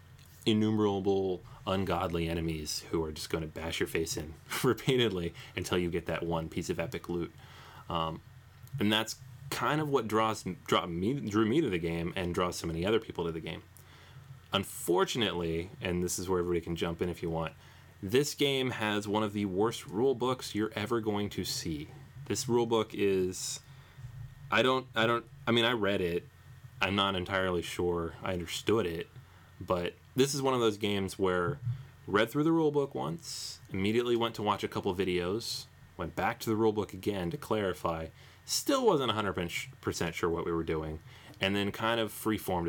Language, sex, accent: English, male, American